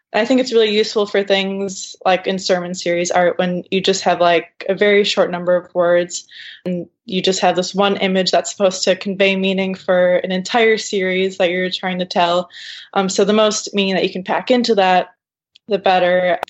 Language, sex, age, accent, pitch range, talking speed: English, female, 20-39, American, 180-205 Hz, 205 wpm